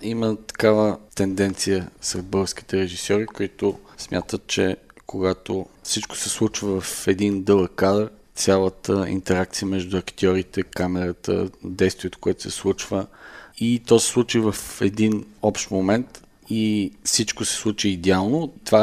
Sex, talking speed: male, 130 wpm